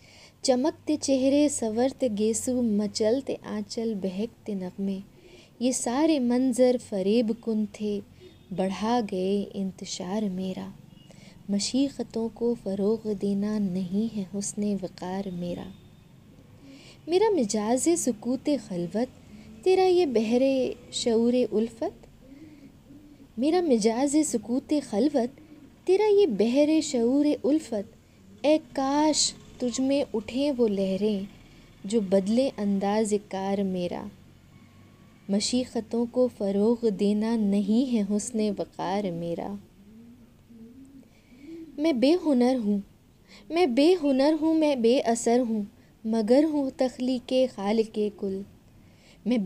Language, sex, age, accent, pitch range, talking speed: Hindi, female, 20-39, native, 205-270 Hz, 100 wpm